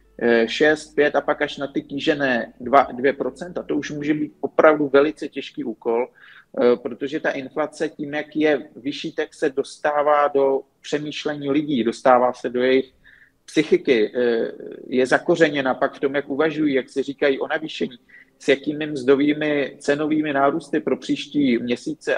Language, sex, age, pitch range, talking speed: Slovak, male, 40-59, 130-145 Hz, 150 wpm